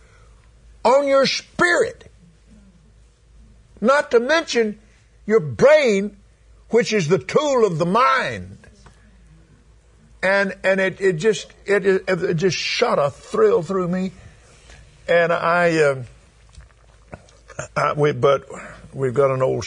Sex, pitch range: male, 130-205 Hz